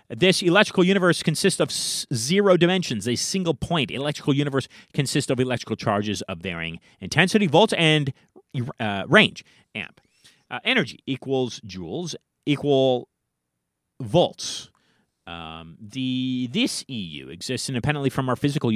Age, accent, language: 40-59, American, English